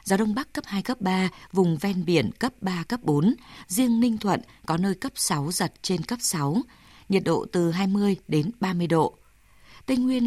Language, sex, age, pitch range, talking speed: Vietnamese, female, 20-39, 170-210 Hz, 200 wpm